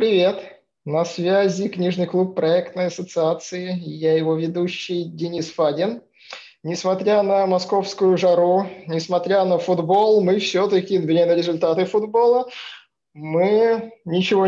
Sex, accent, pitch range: male, native, 165-190 Hz